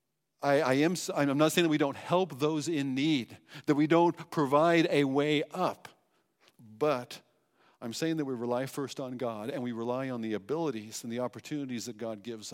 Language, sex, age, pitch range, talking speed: English, male, 50-69, 135-180 Hz, 180 wpm